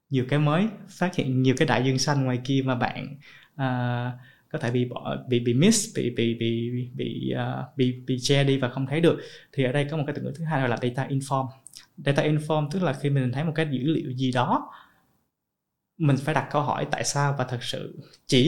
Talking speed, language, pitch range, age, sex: 225 wpm, Vietnamese, 125-155 Hz, 20-39, male